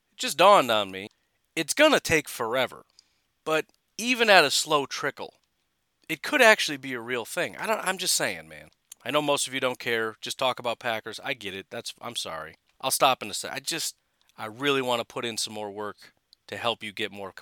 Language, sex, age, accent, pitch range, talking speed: English, male, 30-49, American, 110-150 Hz, 225 wpm